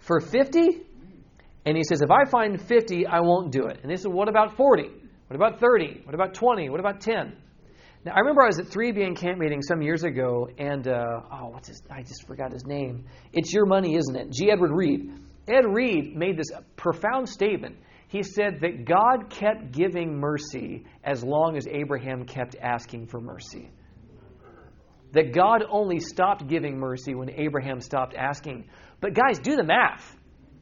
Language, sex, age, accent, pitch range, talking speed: English, male, 40-59, American, 140-215 Hz, 190 wpm